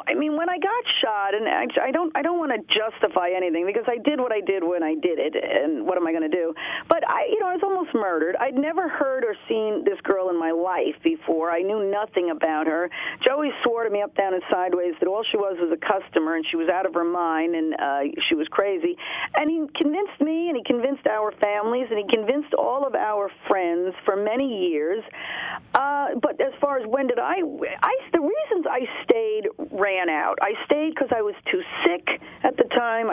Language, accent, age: English, American, 40-59